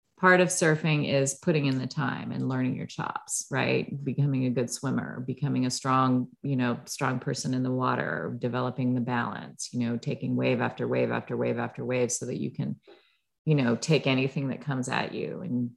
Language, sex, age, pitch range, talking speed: English, female, 30-49, 125-145 Hz, 200 wpm